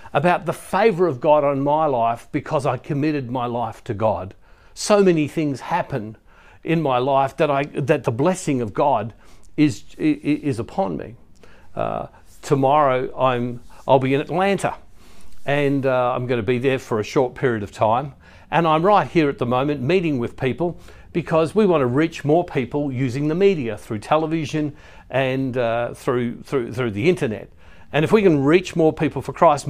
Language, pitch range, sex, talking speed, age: English, 125-165 Hz, male, 180 wpm, 50-69